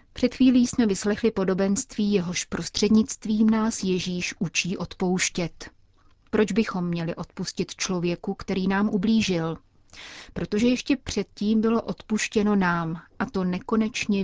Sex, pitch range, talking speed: female, 180-215 Hz, 120 wpm